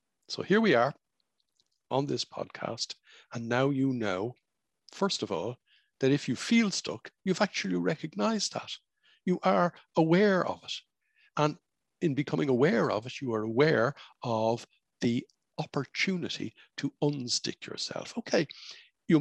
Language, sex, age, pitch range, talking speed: English, male, 60-79, 110-165 Hz, 140 wpm